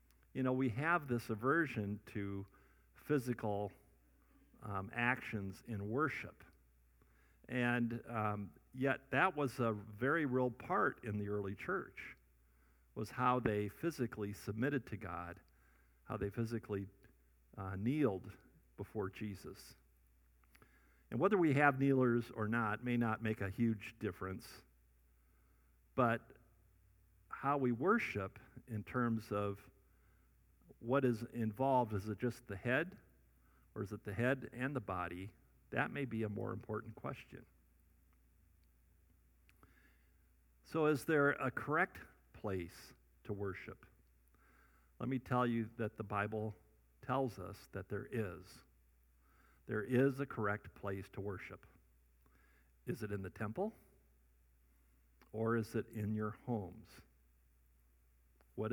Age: 50-69